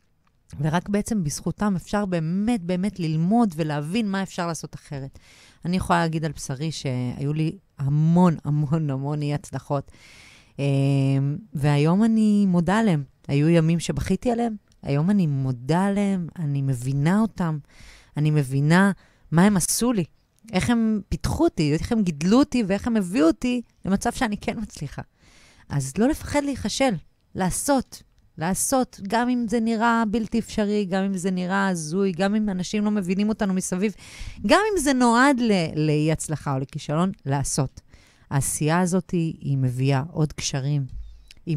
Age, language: 30-49, Hebrew